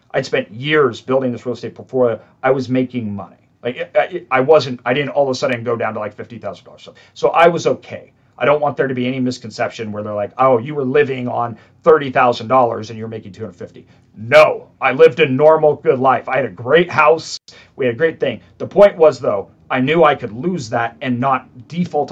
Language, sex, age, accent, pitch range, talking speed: English, male, 40-59, American, 120-150 Hz, 235 wpm